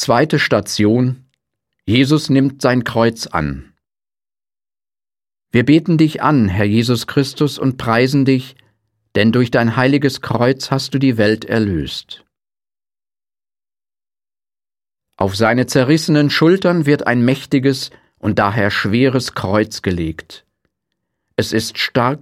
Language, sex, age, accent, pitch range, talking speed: English, male, 50-69, German, 110-140 Hz, 115 wpm